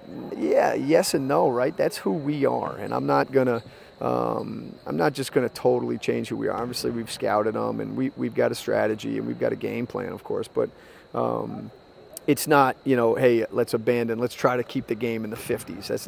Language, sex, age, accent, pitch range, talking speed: English, male, 30-49, American, 115-135 Hz, 230 wpm